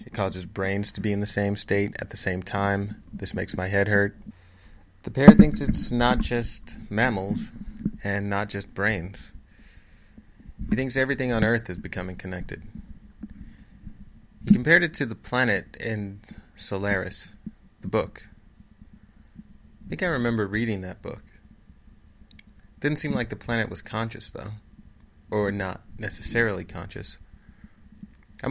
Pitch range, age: 95-115 Hz, 30-49